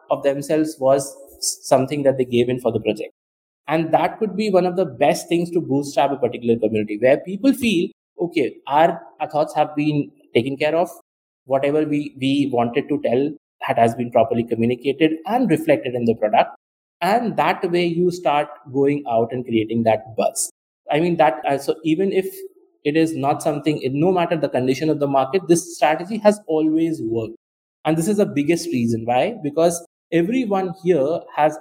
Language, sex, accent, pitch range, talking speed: English, male, Indian, 125-175 Hz, 185 wpm